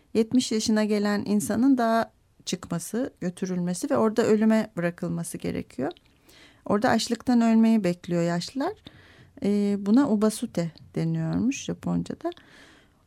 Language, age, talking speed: Turkish, 40-59, 100 wpm